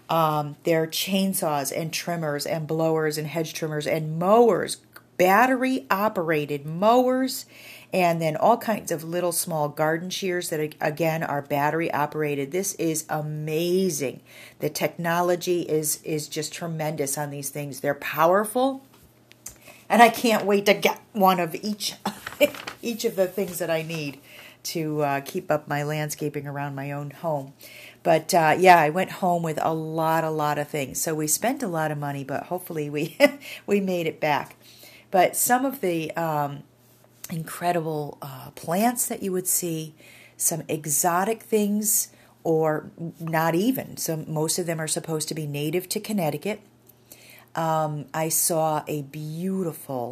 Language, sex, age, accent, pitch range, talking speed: English, female, 40-59, American, 145-180 Hz, 155 wpm